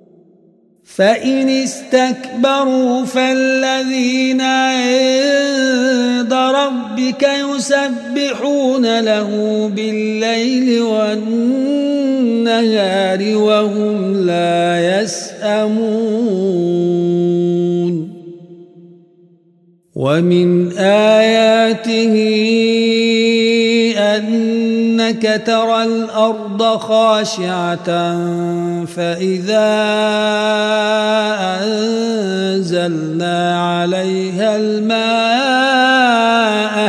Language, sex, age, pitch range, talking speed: Arabic, male, 50-69, 185-255 Hz, 35 wpm